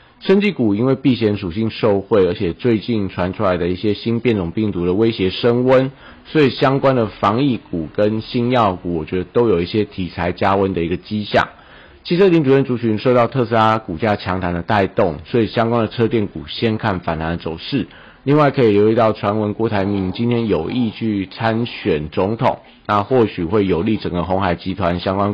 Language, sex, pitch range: Chinese, male, 95-115 Hz